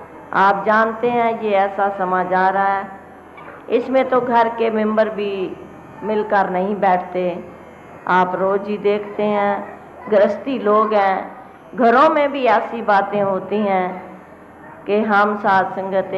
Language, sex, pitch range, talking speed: Hindi, female, 180-215 Hz, 135 wpm